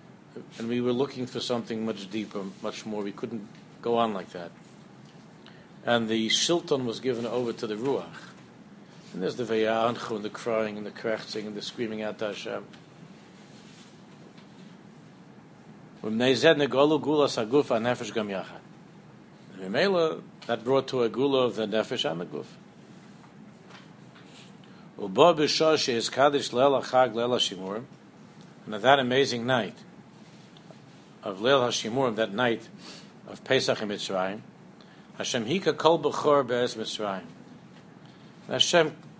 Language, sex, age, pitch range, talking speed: English, male, 60-79, 115-155 Hz, 95 wpm